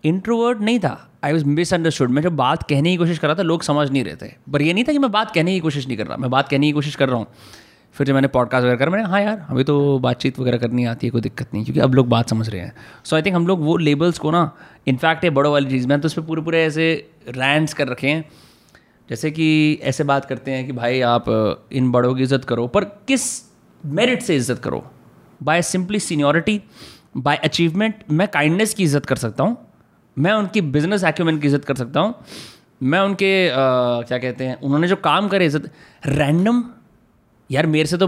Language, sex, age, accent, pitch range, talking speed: Hindi, male, 30-49, native, 130-175 Hz, 230 wpm